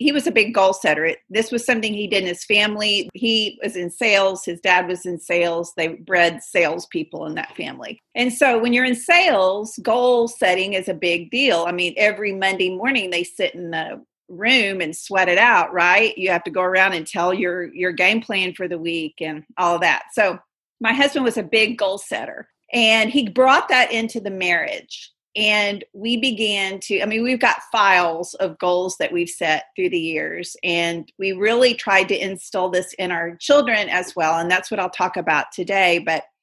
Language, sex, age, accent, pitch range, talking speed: English, female, 40-59, American, 175-230 Hz, 205 wpm